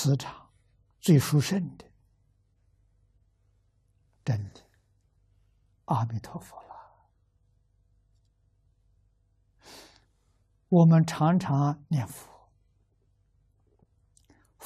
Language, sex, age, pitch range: Chinese, male, 60-79, 100-130 Hz